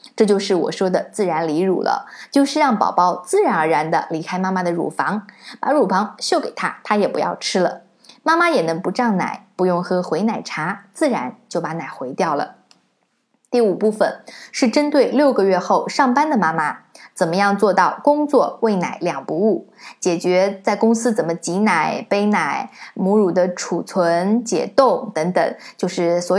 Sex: female